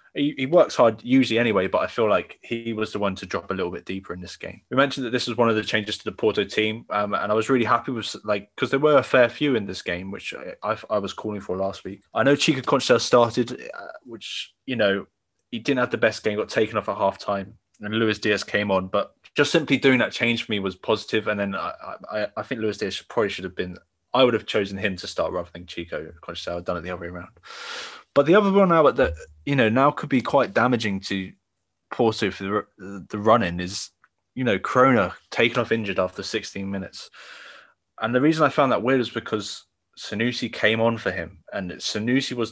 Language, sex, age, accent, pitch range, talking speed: English, male, 20-39, British, 95-120 Hz, 245 wpm